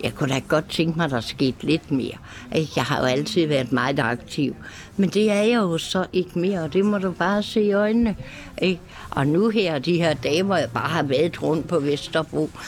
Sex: female